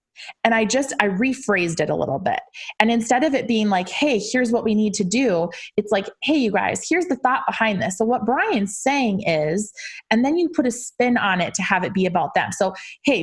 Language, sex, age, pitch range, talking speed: English, female, 20-39, 195-260 Hz, 240 wpm